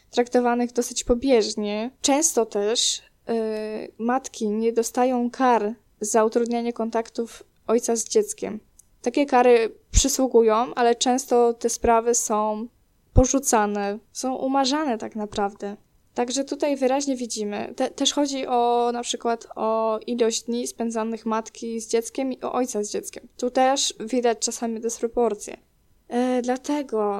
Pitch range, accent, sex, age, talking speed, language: 220-255 Hz, native, female, 10-29, 130 wpm, Polish